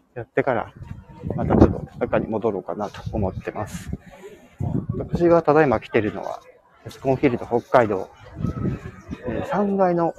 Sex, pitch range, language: male, 110-165 Hz, Japanese